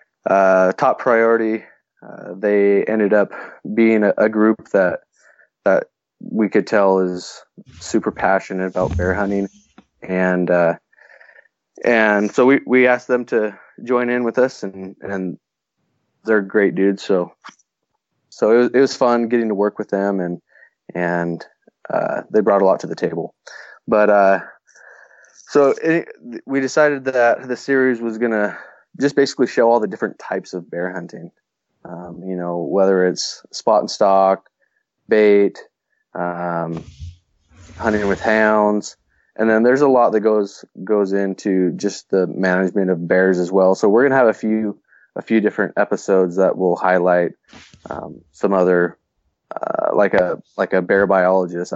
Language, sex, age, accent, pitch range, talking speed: English, male, 20-39, American, 90-110 Hz, 155 wpm